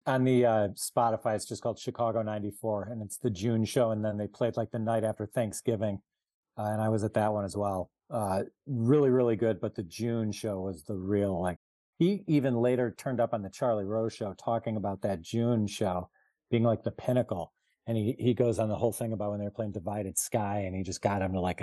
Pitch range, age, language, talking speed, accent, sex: 100-120 Hz, 40-59, English, 235 wpm, American, male